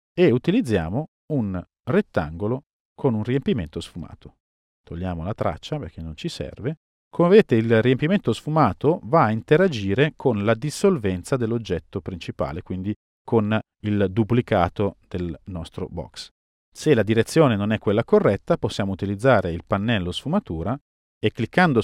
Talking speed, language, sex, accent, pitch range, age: 135 wpm, Italian, male, native, 95-140 Hz, 40-59